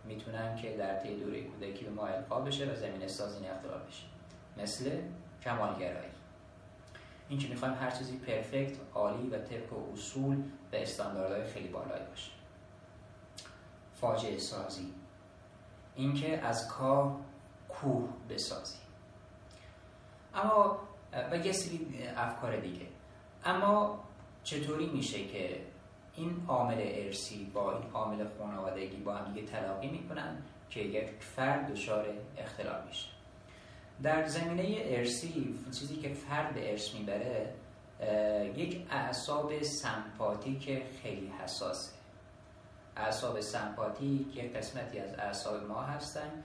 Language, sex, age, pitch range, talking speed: Persian, male, 30-49, 105-135 Hz, 115 wpm